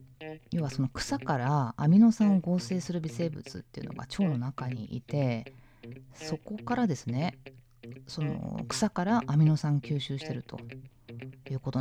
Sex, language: female, Japanese